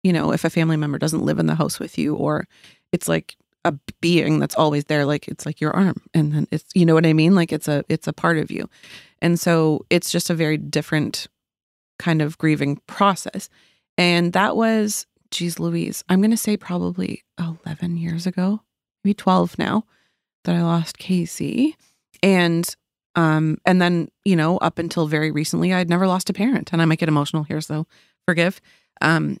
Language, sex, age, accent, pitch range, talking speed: English, female, 30-49, American, 155-200 Hz, 195 wpm